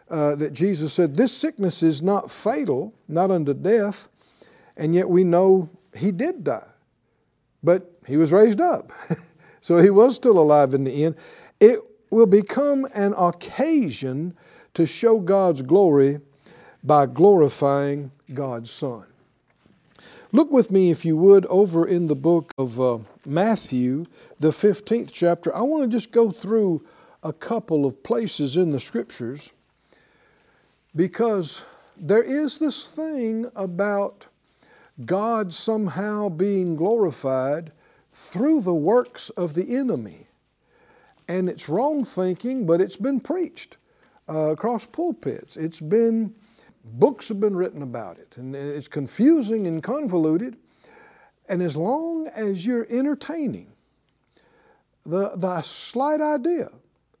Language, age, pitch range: English, 50-69, 155-235 Hz